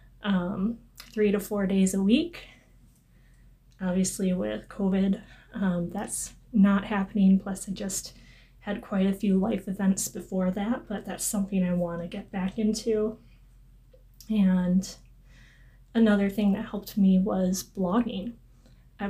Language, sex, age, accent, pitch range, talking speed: English, female, 20-39, American, 190-215 Hz, 135 wpm